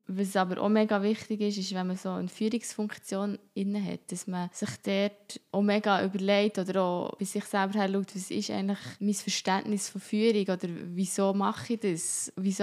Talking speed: 190 wpm